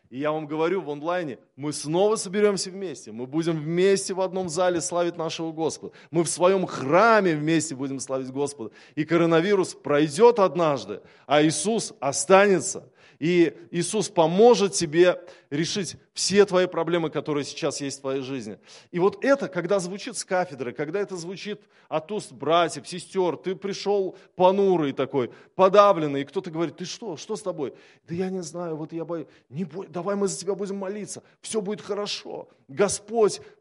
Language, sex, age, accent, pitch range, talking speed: Russian, male, 20-39, native, 140-185 Hz, 165 wpm